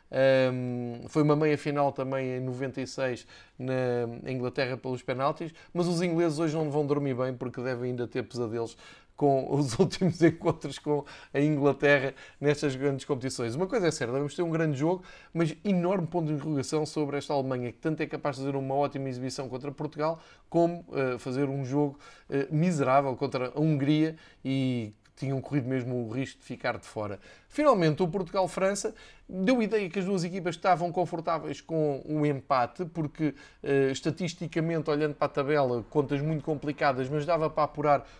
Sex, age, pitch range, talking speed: male, 20-39, 135-165 Hz, 175 wpm